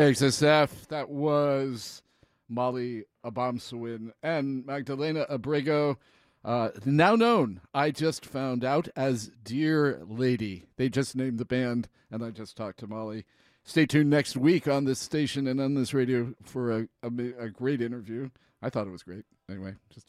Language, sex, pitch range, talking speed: English, male, 110-140 Hz, 160 wpm